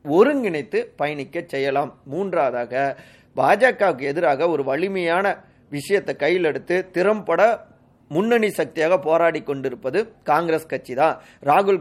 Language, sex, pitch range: Tamil, male, 140-185 Hz